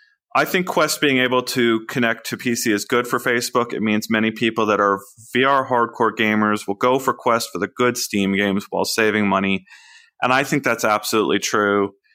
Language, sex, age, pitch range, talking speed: English, male, 30-49, 105-140 Hz, 200 wpm